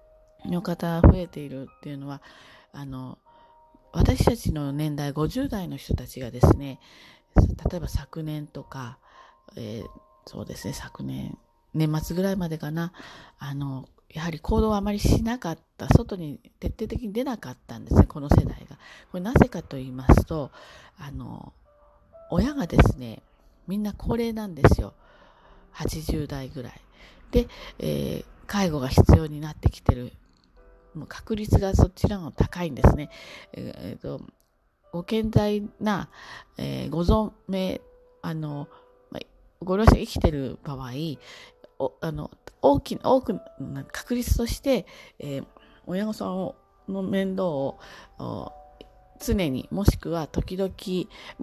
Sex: female